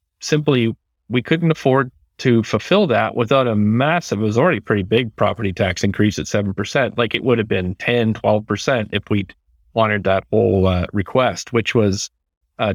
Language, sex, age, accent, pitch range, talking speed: English, male, 40-59, American, 105-130 Hz, 180 wpm